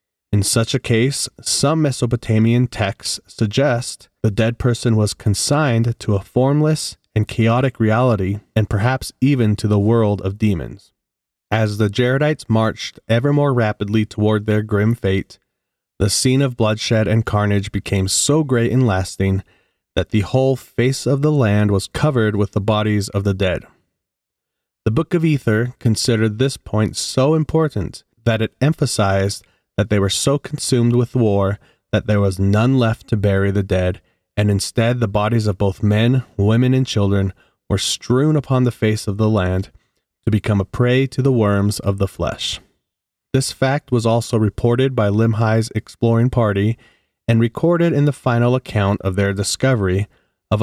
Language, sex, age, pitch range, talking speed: English, male, 30-49, 100-125 Hz, 165 wpm